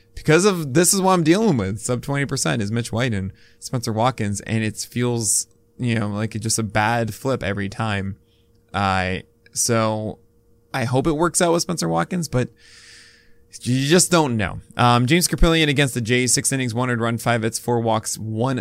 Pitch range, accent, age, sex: 105-135 Hz, American, 20-39, male